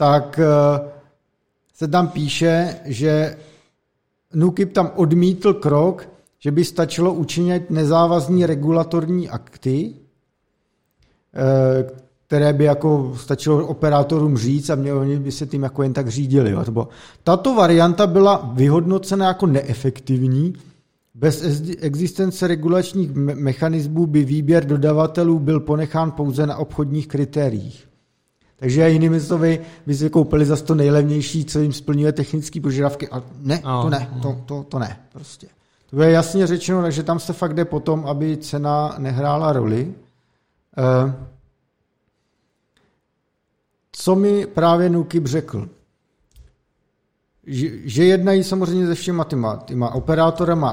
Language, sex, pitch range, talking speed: Czech, male, 140-170 Hz, 120 wpm